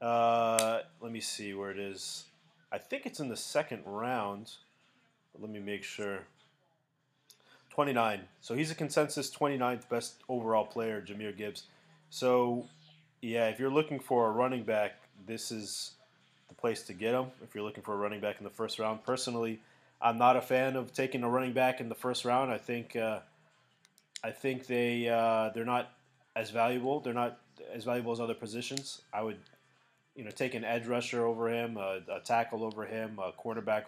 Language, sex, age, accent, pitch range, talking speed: English, male, 20-39, American, 105-125 Hz, 185 wpm